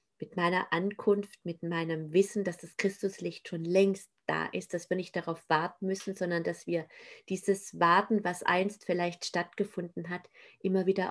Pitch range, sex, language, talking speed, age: 165-185 Hz, female, German, 170 wpm, 30-49